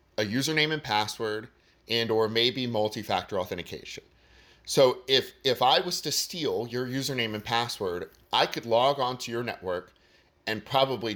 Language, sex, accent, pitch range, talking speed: English, male, American, 105-135 Hz, 155 wpm